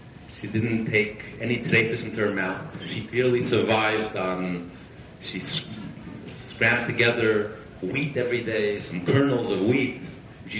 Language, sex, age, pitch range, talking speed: English, male, 40-59, 105-125 Hz, 135 wpm